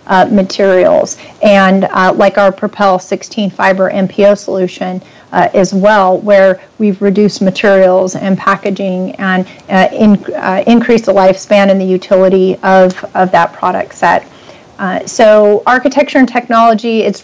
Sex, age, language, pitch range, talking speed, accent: female, 40-59, English, 195-225 Hz, 140 wpm, American